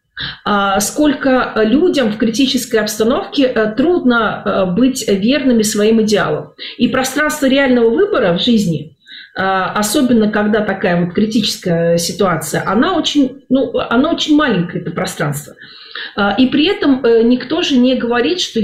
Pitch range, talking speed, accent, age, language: 205-255 Hz, 115 wpm, native, 40-59, Russian